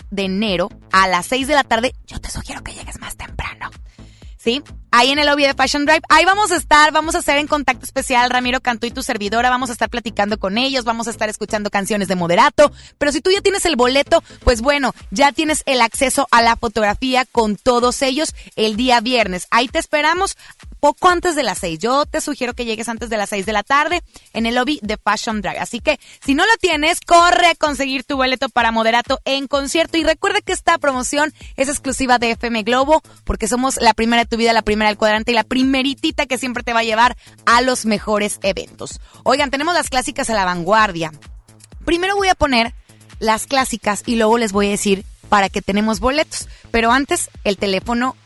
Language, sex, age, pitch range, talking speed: Spanish, female, 30-49, 220-290 Hz, 220 wpm